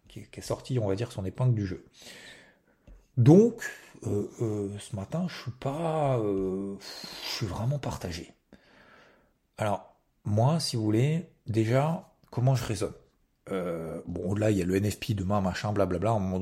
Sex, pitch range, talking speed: male, 95-115 Hz, 170 wpm